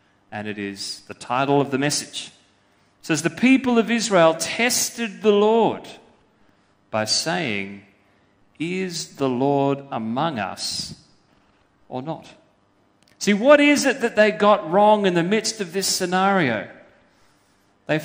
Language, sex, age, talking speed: English, male, 40-59, 135 wpm